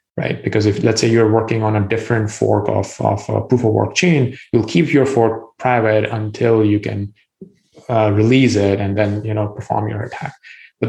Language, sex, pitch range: English, male, 105-125 Hz